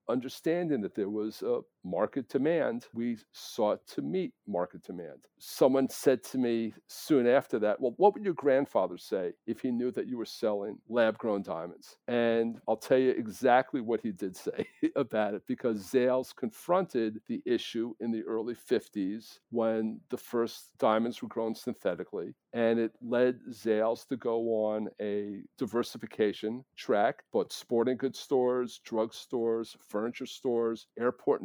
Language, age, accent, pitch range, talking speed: English, 50-69, American, 110-130 Hz, 155 wpm